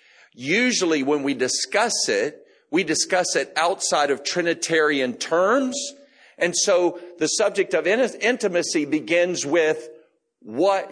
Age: 50-69